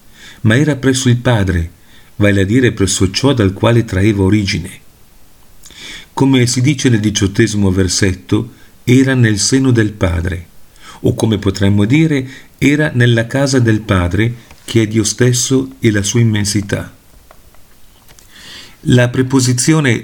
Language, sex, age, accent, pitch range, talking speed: Italian, male, 40-59, native, 95-125 Hz, 130 wpm